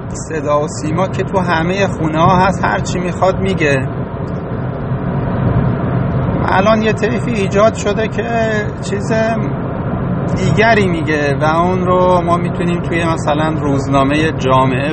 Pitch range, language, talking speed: 135-170 Hz, English, 120 wpm